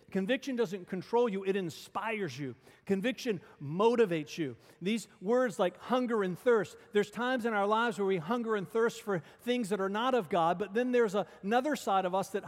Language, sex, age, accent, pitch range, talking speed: English, male, 40-59, American, 175-235 Hz, 195 wpm